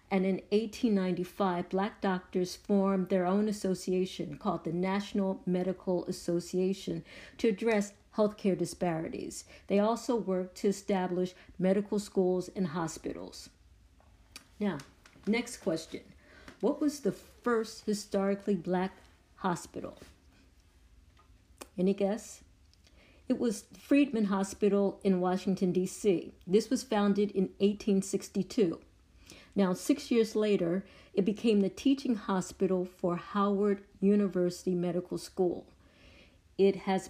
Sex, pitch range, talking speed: female, 175-205 Hz, 110 wpm